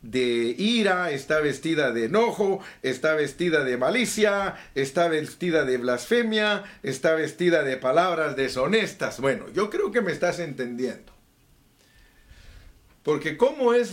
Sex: male